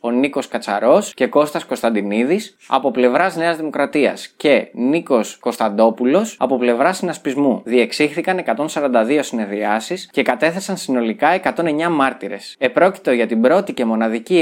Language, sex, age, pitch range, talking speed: Greek, male, 20-39, 120-175 Hz, 125 wpm